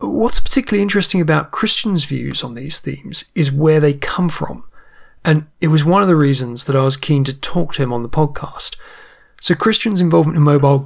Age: 30-49